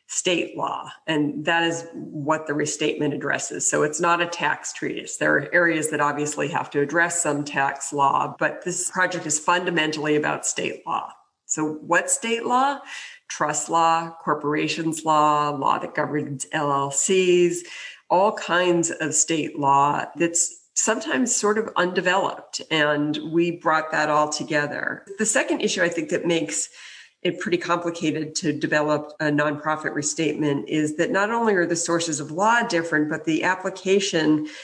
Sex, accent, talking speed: female, American, 155 wpm